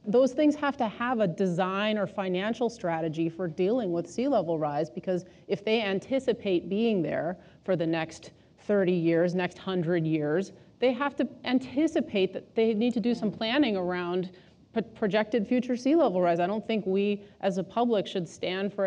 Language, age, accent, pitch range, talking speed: English, 30-49, American, 175-220 Hz, 180 wpm